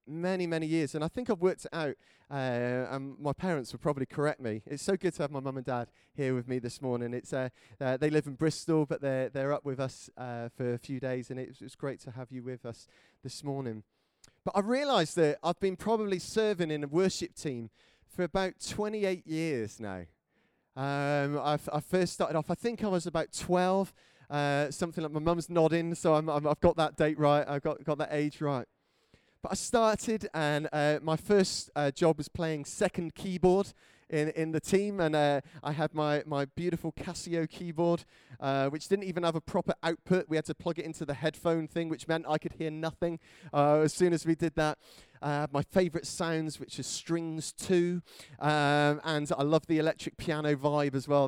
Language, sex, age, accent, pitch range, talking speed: English, male, 30-49, British, 135-170 Hz, 215 wpm